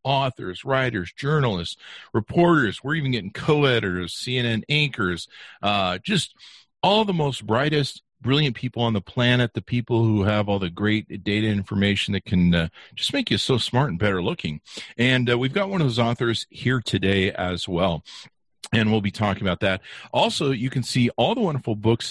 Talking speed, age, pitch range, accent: 180 wpm, 50-69, 105-150 Hz, American